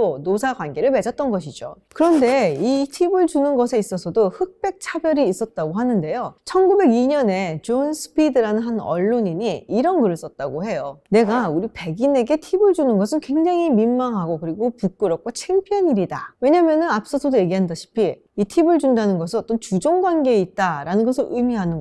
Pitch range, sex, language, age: 205-320 Hz, female, Korean, 30-49